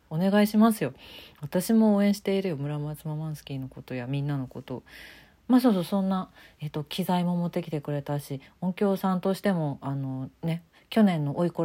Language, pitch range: Japanese, 150-210 Hz